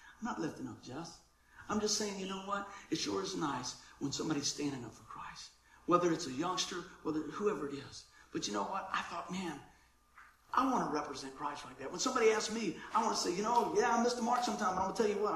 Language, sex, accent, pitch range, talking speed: English, male, American, 145-215 Hz, 255 wpm